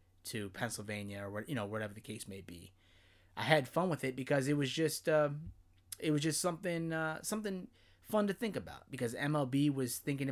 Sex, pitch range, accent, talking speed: male, 100-145 Hz, American, 200 wpm